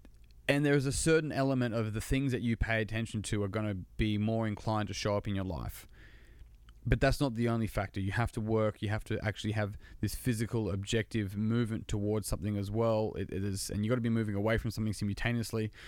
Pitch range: 110-130 Hz